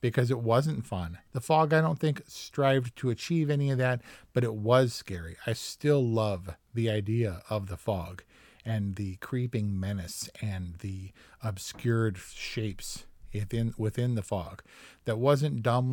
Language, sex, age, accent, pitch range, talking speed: English, male, 40-59, American, 110-135 Hz, 160 wpm